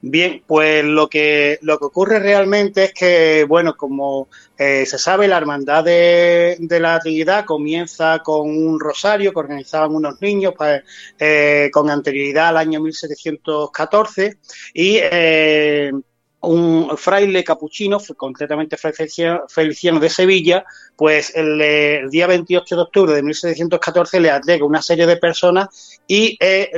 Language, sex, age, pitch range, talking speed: Spanish, male, 30-49, 150-180 Hz, 140 wpm